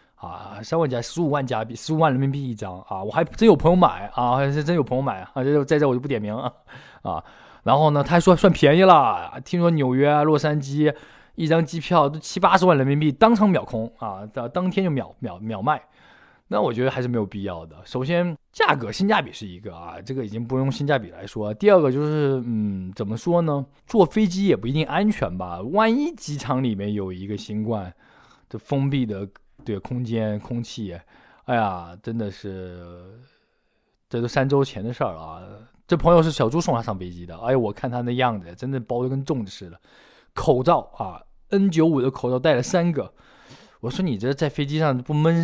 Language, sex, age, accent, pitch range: Chinese, male, 20-39, native, 105-155 Hz